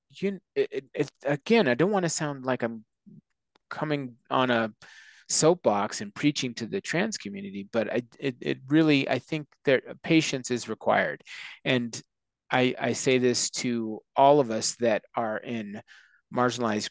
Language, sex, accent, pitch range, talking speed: English, male, American, 115-145 Hz, 160 wpm